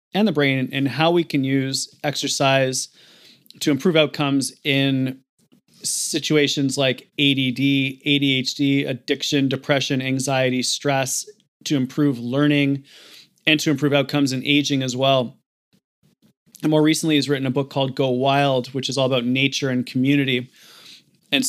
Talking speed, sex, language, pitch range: 140 wpm, male, English, 130-145 Hz